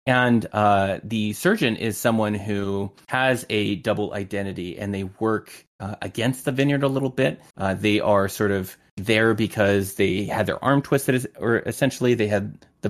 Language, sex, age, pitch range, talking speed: English, male, 20-39, 100-120 Hz, 175 wpm